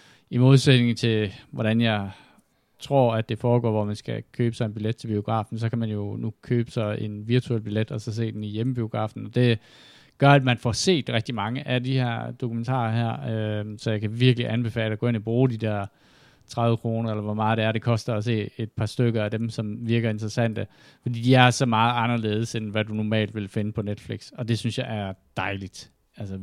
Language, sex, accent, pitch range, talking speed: Danish, male, native, 105-125 Hz, 225 wpm